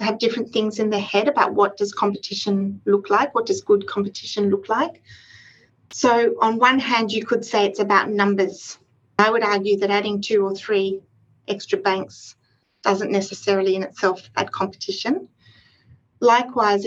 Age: 40-59